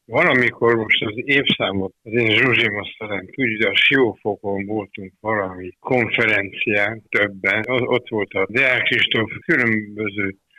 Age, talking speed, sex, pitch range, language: 60-79, 120 wpm, male, 95-115 Hz, Hungarian